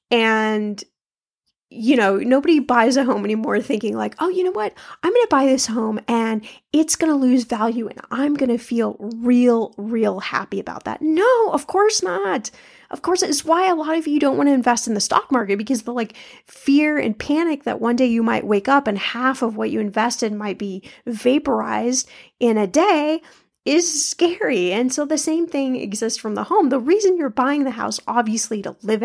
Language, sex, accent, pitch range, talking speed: English, female, American, 220-280 Hz, 210 wpm